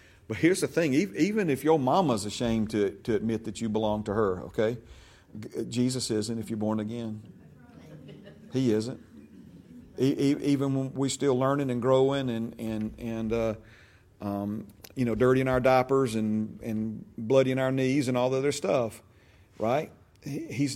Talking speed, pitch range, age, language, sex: 160 wpm, 110-165 Hz, 40-59, English, male